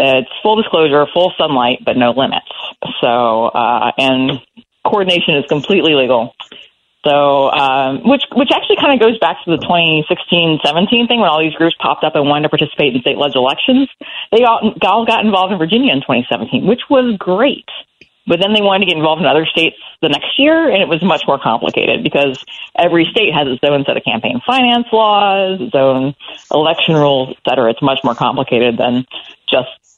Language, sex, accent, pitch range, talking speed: English, female, American, 130-190 Hz, 190 wpm